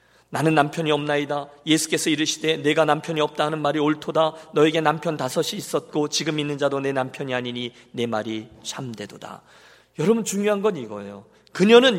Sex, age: male, 40-59